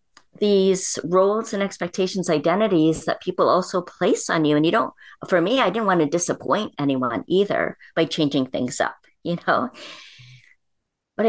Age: 50-69